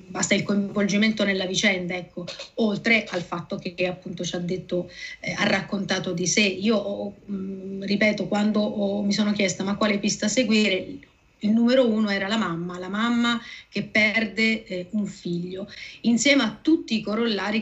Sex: female